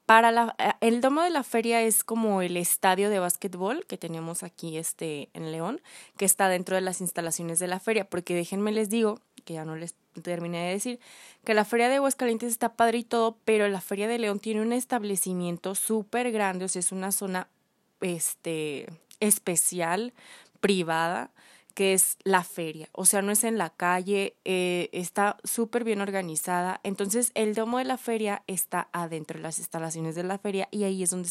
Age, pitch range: 20-39, 180-225 Hz